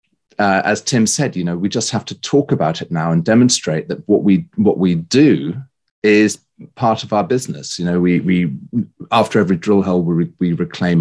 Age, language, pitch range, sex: 30-49, English, 90-125 Hz, male